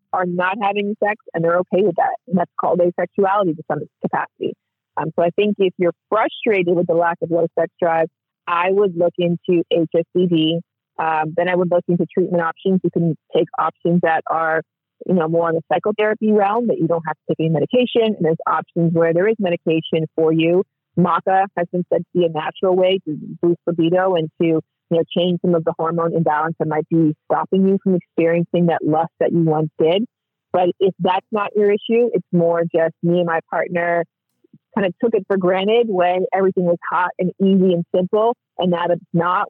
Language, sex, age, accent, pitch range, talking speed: English, female, 30-49, American, 165-190 Hz, 210 wpm